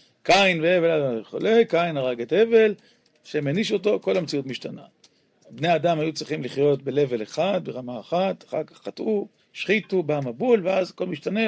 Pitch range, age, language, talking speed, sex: 130-175 Hz, 40-59, Hebrew, 155 wpm, male